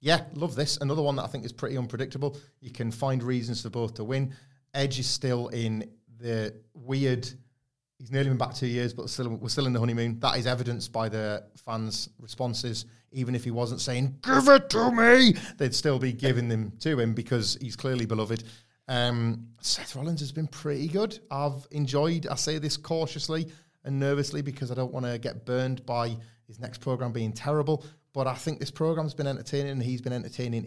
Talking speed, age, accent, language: 200 wpm, 30-49, British, English